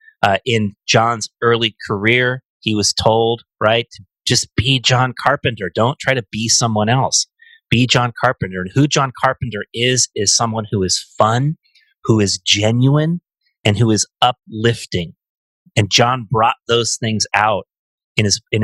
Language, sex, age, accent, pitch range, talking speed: English, male, 30-49, American, 100-120 Hz, 160 wpm